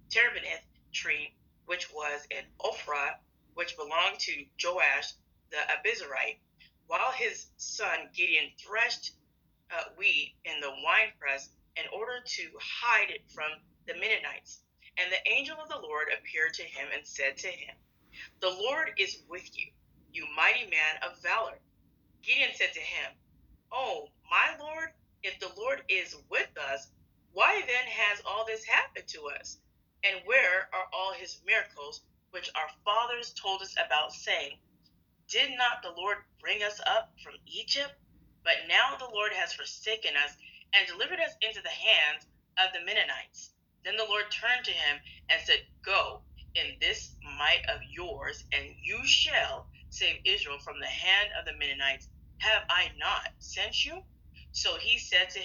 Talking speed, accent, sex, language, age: 160 wpm, American, female, English, 30-49